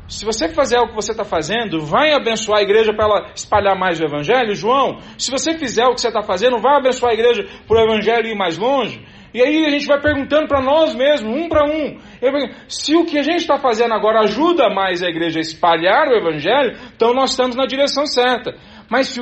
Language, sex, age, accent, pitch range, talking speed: Portuguese, male, 40-59, Brazilian, 170-250 Hz, 230 wpm